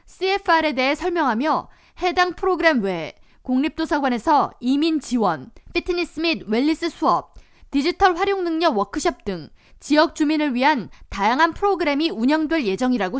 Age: 20-39